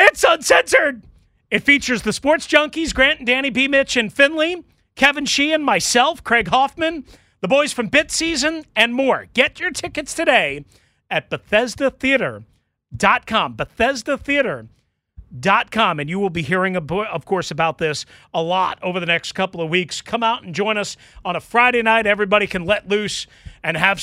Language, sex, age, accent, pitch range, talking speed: English, male, 40-59, American, 175-250 Hz, 160 wpm